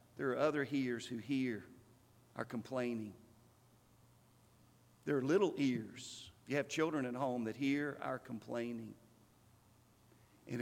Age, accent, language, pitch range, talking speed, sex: 50-69, American, English, 115-160 Hz, 130 wpm, male